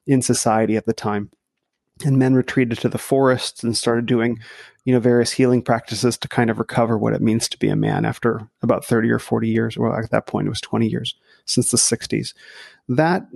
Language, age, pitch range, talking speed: English, 30-49, 115-130 Hz, 215 wpm